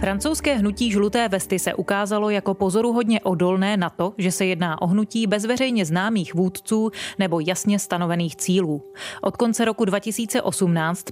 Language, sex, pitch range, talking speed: Czech, female, 185-220 Hz, 145 wpm